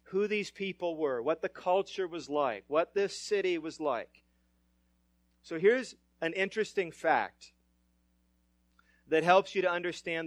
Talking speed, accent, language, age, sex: 140 wpm, American, English, 40-59, male